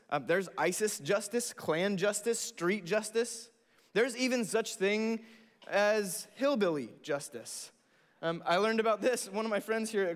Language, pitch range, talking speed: English, 190-235 Hz, 155 wpm